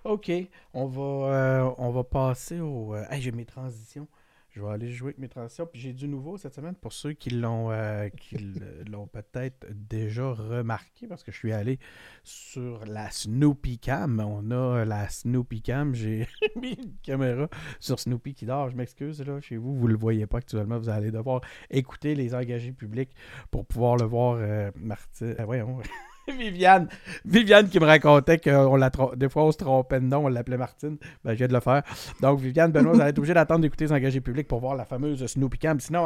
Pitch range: 120-150 Hz